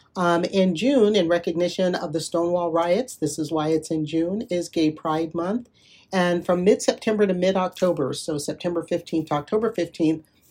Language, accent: English, American